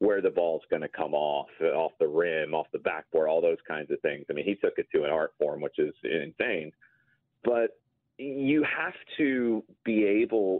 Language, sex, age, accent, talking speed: English, male, 30-49, American, 205 wpm